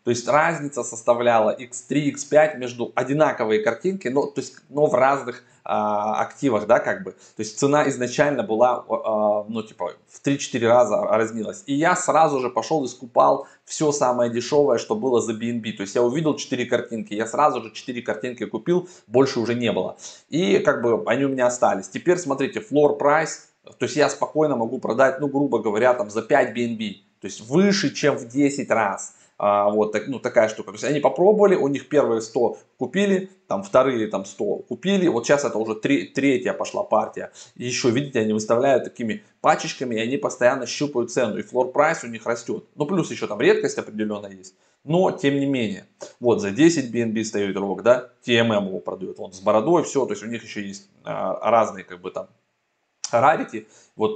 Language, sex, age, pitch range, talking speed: Russian, male, 20-39, 115-145 Hz, 190 wpm